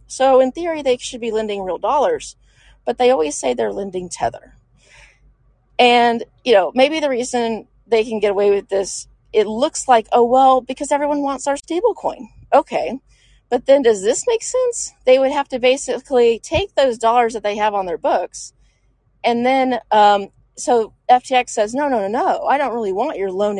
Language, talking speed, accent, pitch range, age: English, 190 wpm, American, 195-265 Hz, 30-49